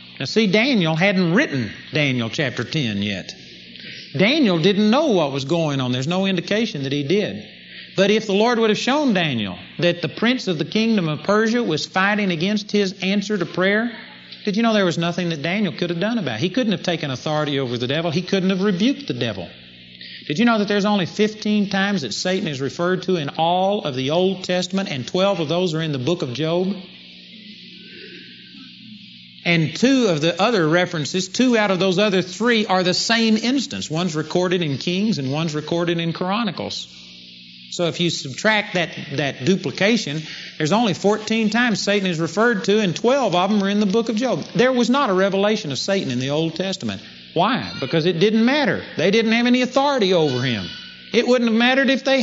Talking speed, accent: 205 wpm, American